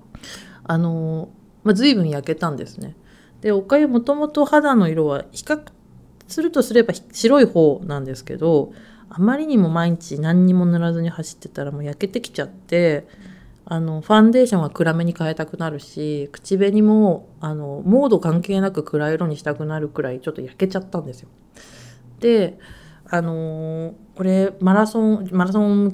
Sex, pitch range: female, 155-210 Hz